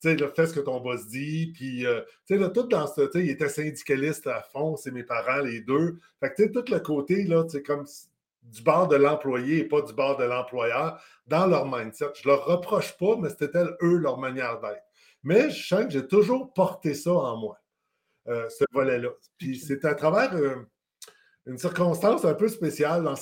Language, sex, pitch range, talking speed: French, male, 135-175 Hz, 225 wpm